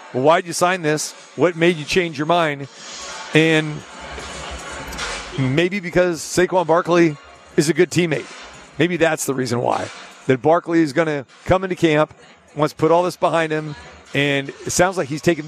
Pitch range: 145-175 Hz